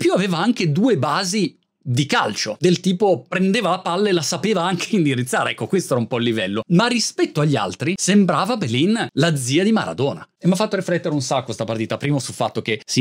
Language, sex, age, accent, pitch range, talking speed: Italian, male, 30-49, native, 130-180 Hz, 220 wpm